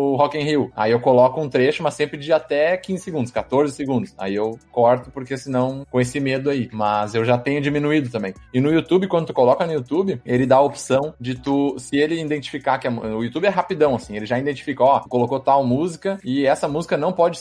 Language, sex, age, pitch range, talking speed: Portuguese, male, 20-39, 120-155 Hz, 230 wpm